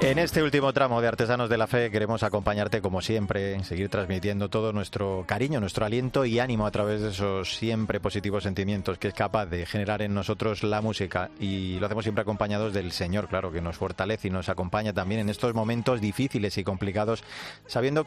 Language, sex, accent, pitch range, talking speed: Spanish, male, Spanish, 95-110 Hz, 200 wpm